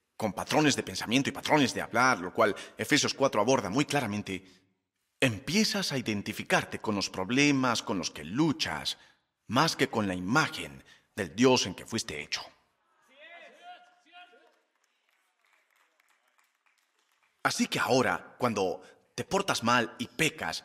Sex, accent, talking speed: male, Spanish, 130 wpm